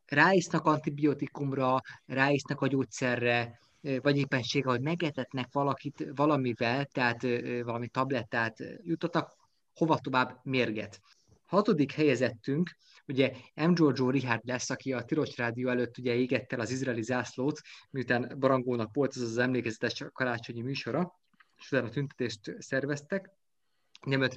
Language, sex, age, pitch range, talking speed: Hungarian, male, 20-39, 125-145 Hz, 115 wpm